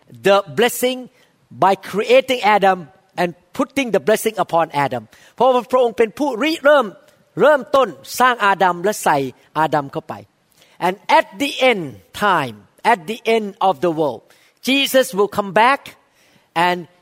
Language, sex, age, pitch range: Thai, male, 40-59, 175-235 Hz